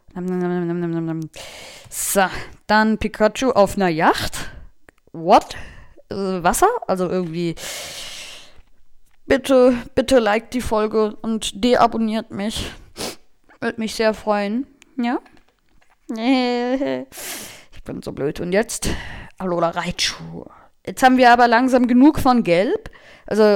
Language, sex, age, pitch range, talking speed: German, female, 20-39, 185-250 Hz, 100 wpm